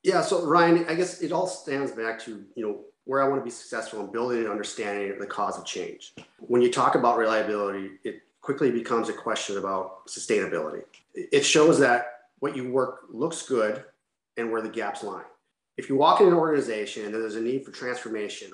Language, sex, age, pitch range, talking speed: English, male, 30-49, 115-150 Hz, 205 wpm